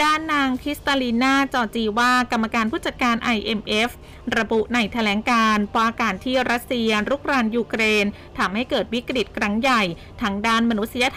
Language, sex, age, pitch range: Thai, female, 20-39, 210-255 Hz